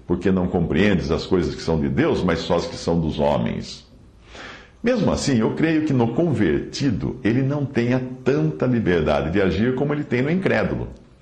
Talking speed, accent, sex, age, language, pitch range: 185 wpm, Brazilian, male, 60-79, Portuguese, 75-125 Hz